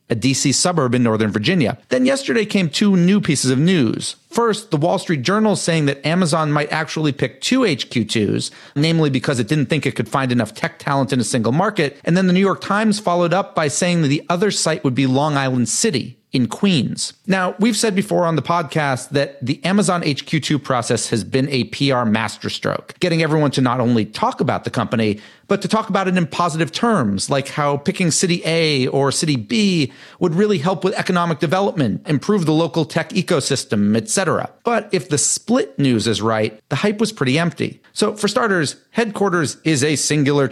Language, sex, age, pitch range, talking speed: English, male, 40-59, 140-190 Hz, 200 wpm